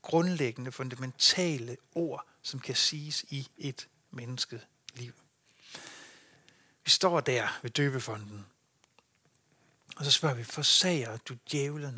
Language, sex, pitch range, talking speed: Danish, male, 125-155 Hz, 105 wpm